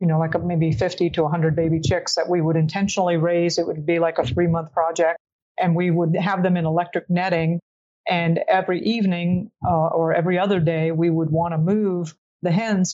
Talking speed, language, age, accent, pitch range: 210 wpm, English, 50-69, American, 165-185 Hz